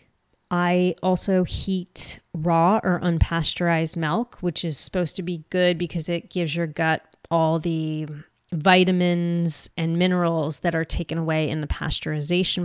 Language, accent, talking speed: English, American, 140 wpm